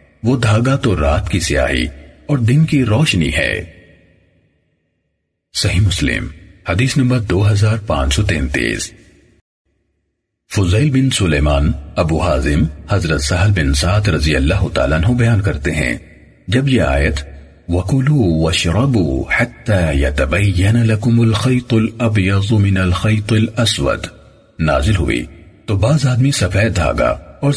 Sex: male